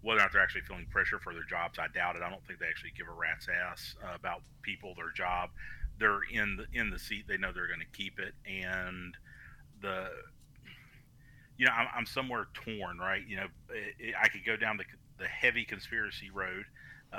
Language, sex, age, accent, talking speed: English, male, 40-59, American, 220 wpm